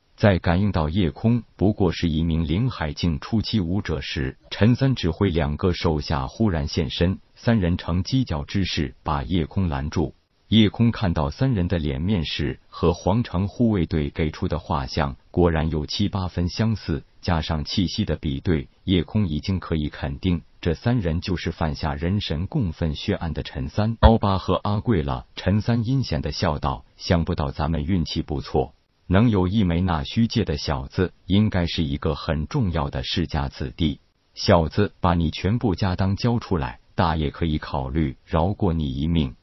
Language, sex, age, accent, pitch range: Chinese, male, 50-69, native, 80-100 Hz